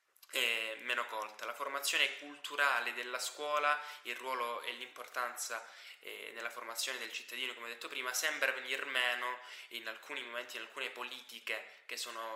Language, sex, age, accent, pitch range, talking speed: Italian, male, 10-29, native, 110-135 Hz, 155 wpm